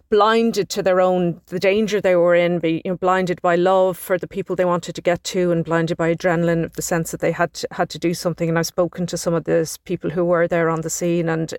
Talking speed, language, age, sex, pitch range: 270 wpm, English, 30-49, female, 165-180 Hz